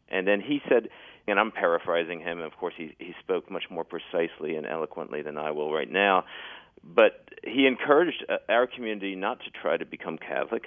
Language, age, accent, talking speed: English, 40-59, American, 190 wpm